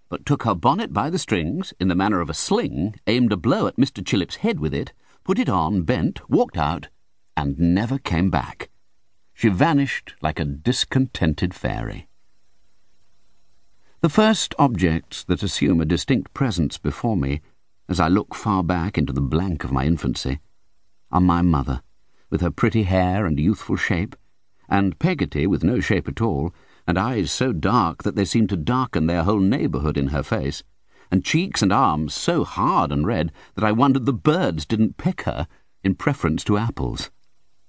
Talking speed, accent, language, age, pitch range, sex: 175 wpm, British, English, 50-69, 80-115 Hz, male